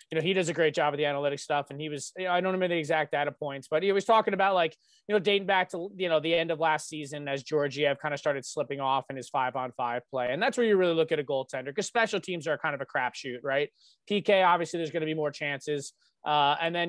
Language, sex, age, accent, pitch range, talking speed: English, male, 20-39, American, 145-180 Hz, 290 wpm